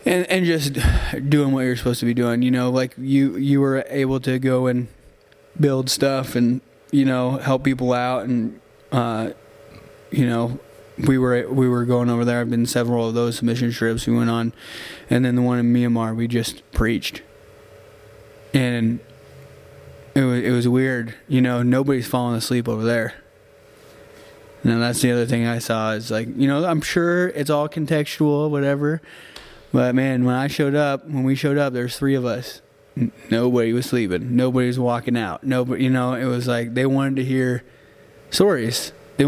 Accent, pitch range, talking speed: American, 120-140 Hz, 185 wpm